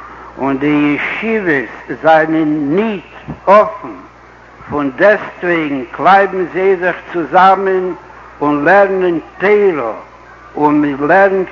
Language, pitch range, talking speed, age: Hebrew, 155-195 Hz, 90 wpm, 60-79